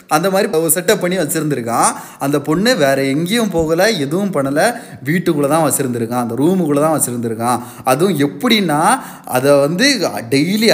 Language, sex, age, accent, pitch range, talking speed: Tamil, male, 20-39, native, 145-205 Hz, 135 wpm